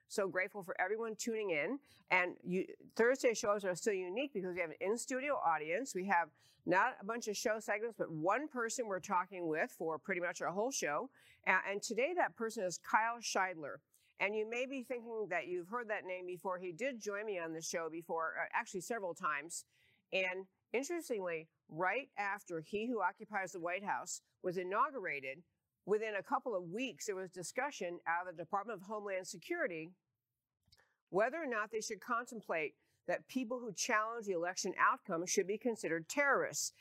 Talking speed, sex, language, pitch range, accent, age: 185 wpm, female, English, 170-225 Hz, American, 50-69